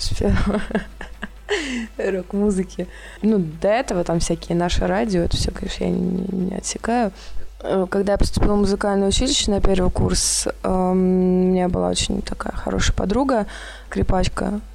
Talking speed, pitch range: 125 wpm, 180-210 Hz